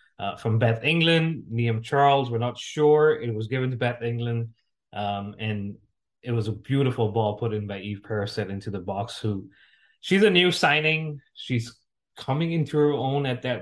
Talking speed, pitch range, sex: 185 wpm, 110-135 Hz, male